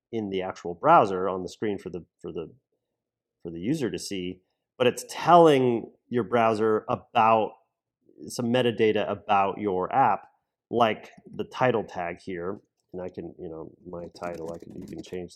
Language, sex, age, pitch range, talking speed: English, male, 30-49, 95-120 Hz, 170 wpm